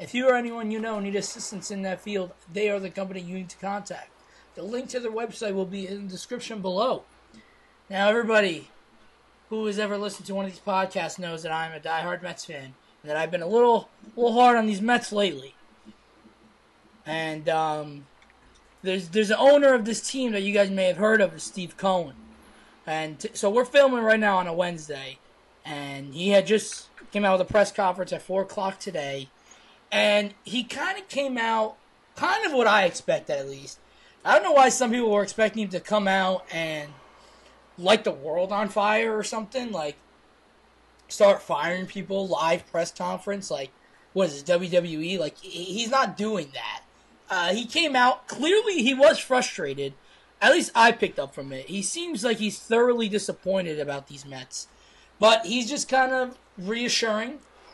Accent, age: American, 20-39